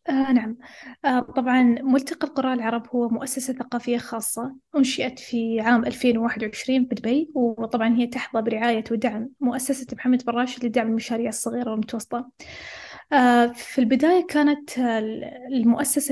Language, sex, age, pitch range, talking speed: Arabic, female, 20-39, 235-275 Hz, 130 wpm